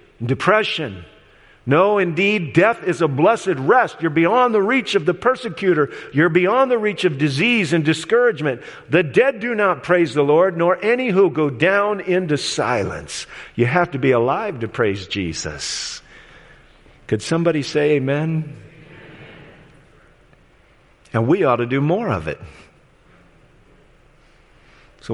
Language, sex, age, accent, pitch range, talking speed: English, male, 50-69, American, 120-175 Hz, 140 wpm